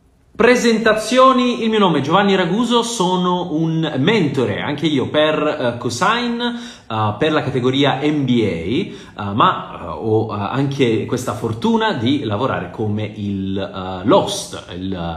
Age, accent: 30-49, native